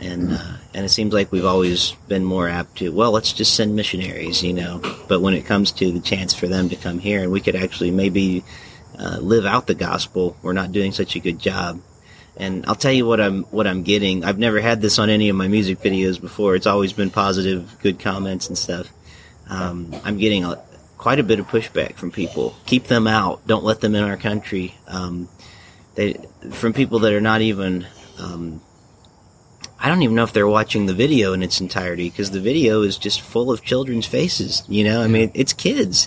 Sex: male